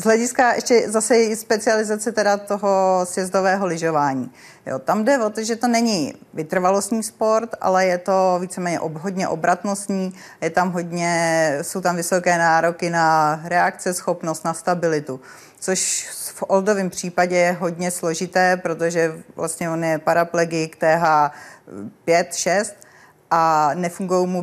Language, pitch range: Czech, 165-200 Hz